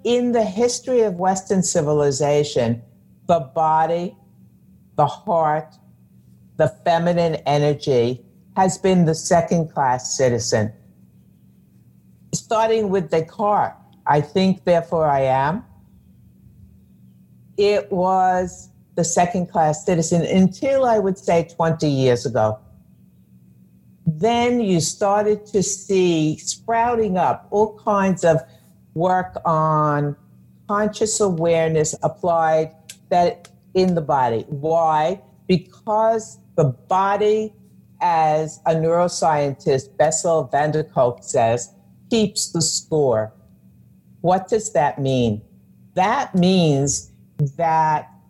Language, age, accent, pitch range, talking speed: English, 60-79, American, 140-195 Hz, 100 wpm